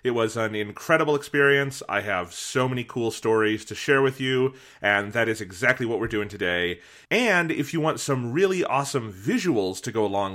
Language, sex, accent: English, male, American